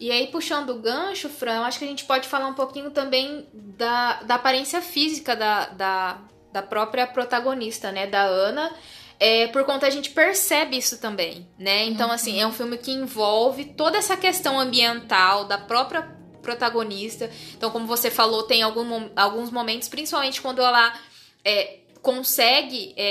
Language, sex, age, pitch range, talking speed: Portuguese, female, 10-29, 210-265 Hz, 155 wpm